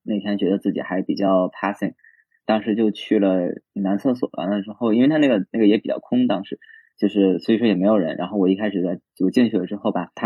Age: 20-39